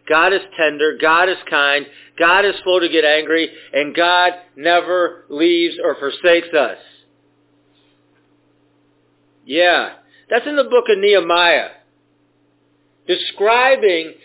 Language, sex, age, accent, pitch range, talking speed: English, male, 50-69, American, 165-230 Hz, 115 wpm